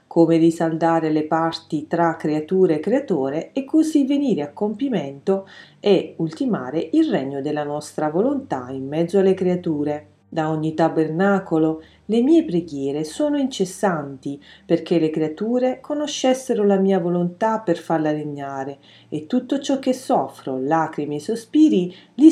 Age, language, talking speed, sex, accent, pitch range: 40-59, Italian, 135 wpm, female, native, 150-215 Hz